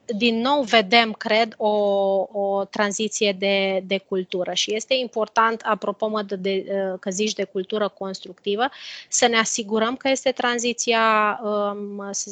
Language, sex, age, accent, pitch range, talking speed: Romanian, female, 20-39, native, 195-220 Hz, 135 wpm